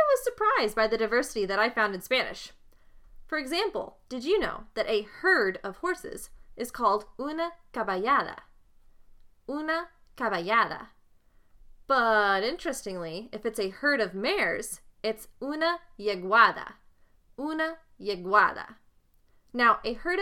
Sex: female